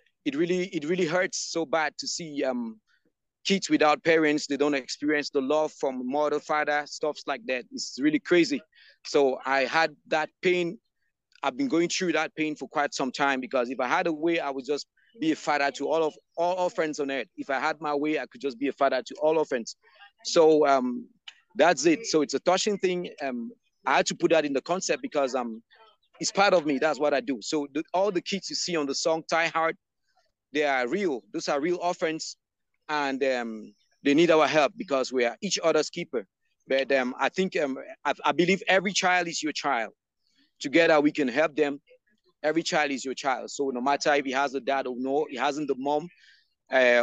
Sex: male